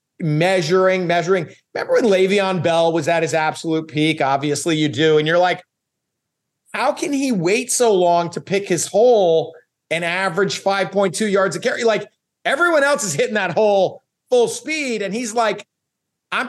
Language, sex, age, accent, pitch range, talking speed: English, male, 30-49, American, 160-215 Hz, 165 wpm